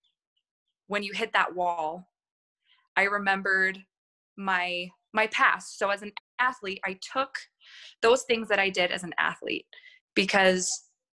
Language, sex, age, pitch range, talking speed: English, female, 20-39, 195-255 Hz, 135 wpm